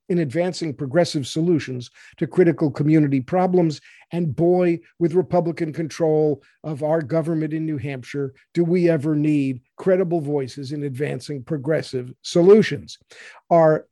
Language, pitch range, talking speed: English, 145-195 Hz, 130 wpm